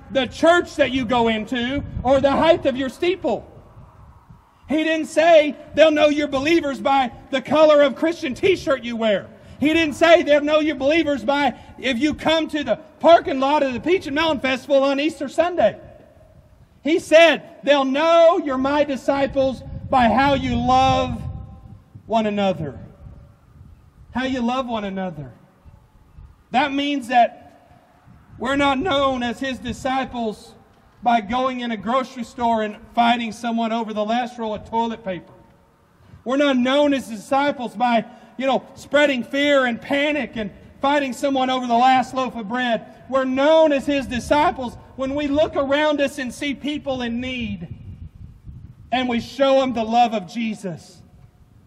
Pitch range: 235-290 Hz